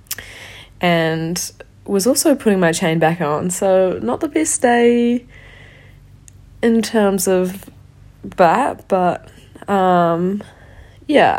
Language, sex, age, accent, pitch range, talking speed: English, female, 20-39, Australian, 150-190 Hz, 105 wpm